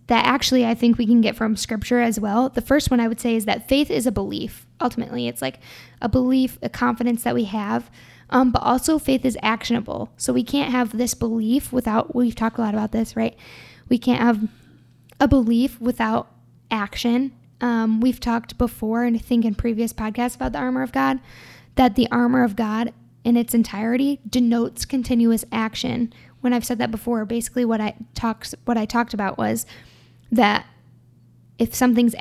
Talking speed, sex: 190 wpm, female